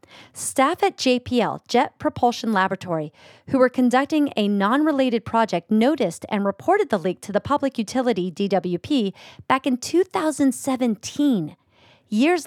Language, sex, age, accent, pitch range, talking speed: English, female, 40-59, American, 200-270 Hz, 130 wpm